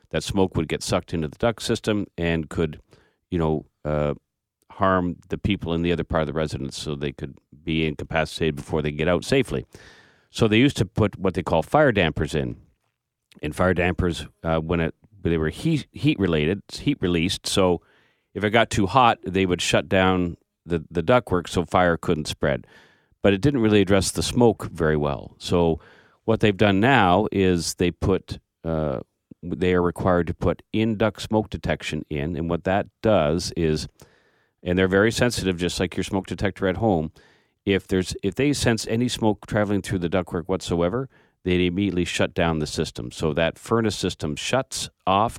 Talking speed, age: 190 wpm, 40-59